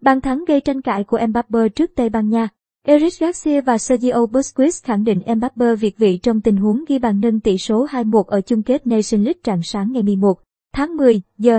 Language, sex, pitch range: Vietnamese, male, 215-255 Hz